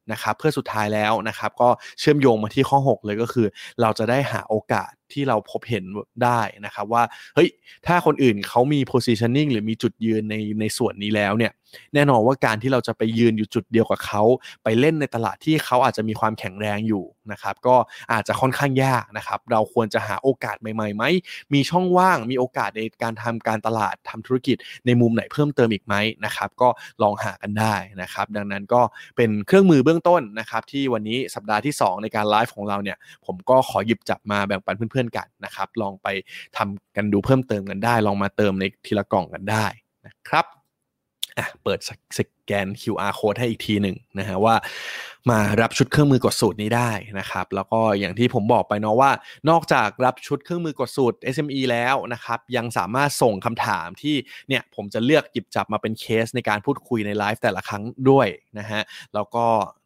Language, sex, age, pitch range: Thai, male, 20-39, 105-125 Hz